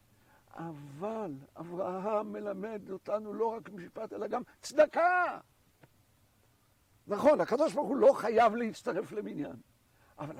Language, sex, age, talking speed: Hebrew, male, 60-79, 100 wpm